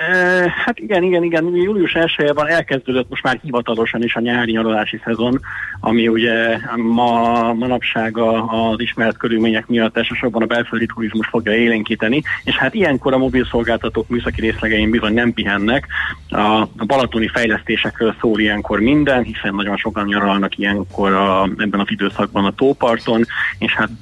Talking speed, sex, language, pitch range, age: 145 wpm, male, Hungarian, 100-125 Hz, 30-49